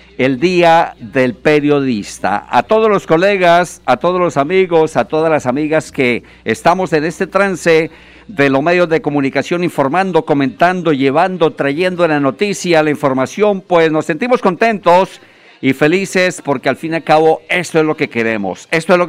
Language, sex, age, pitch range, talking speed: Spanish, male, 50-69, 145-185 Hz, 170 wpm